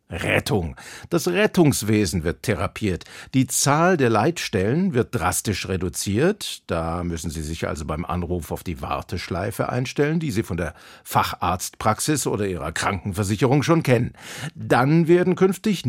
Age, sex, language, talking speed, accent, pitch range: 50-69, male, German, 135 wpm, German, 100-150 Hz